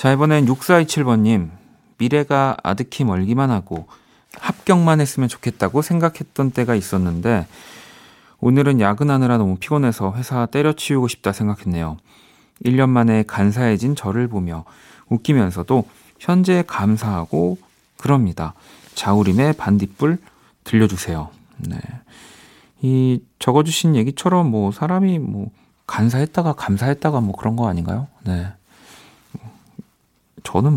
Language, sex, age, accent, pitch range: Korean, male, 40-59, native, 95-140 Hz